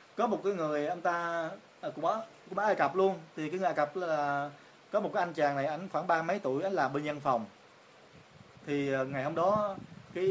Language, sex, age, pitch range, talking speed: Vietnamese, male, 20-39, 140-180 Hz, 215 wpm